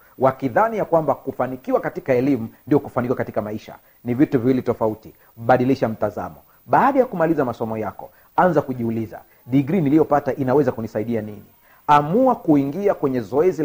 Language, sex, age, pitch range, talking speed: Swahili, male, 40-59, 125-175 Hz, 140 wpm